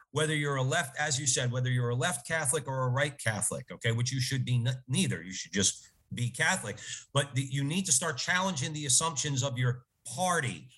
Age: 40-59